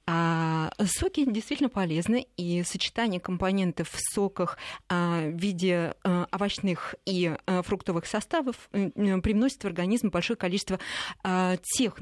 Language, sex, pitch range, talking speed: Russian, female, 180-235 Hz, 100 wpm